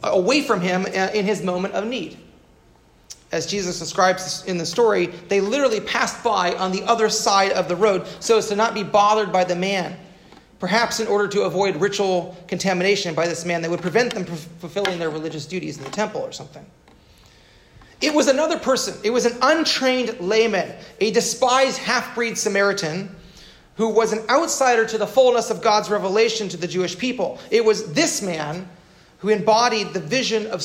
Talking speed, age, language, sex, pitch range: 185 wpm, 30-49, English, male, 170-220 Hz